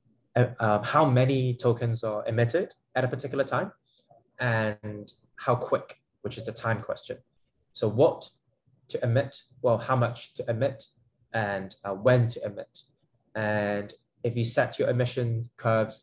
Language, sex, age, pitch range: Chinese, male, 10-29, 110-130 Hz